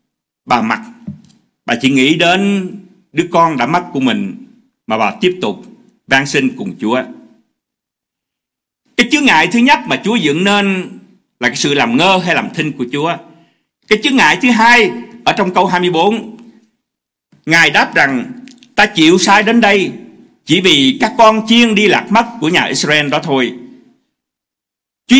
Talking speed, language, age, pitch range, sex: 165 wpm, Vietnamese, 60-79, 175-240 Hz, male